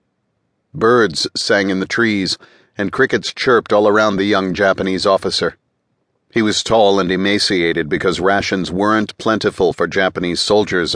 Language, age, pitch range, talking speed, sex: English, 50-69, 95-110 Hz, 140 wpm, male